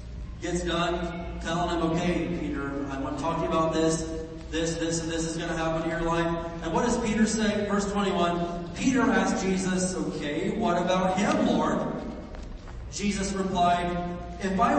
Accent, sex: American, male